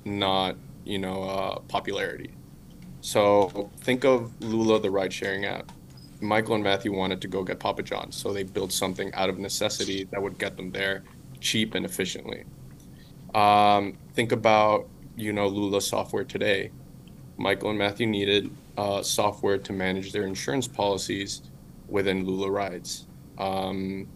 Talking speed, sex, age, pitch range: 145 wpm, male, 20-39, 95-110 Hz